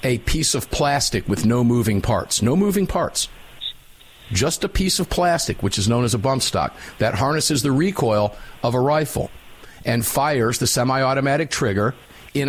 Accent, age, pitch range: American, 50-69, 115-165 Hz